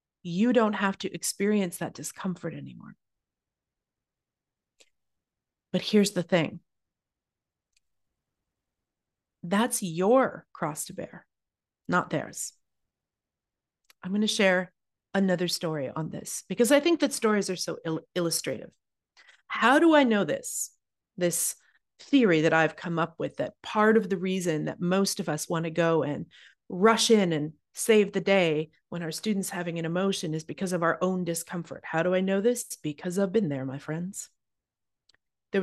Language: English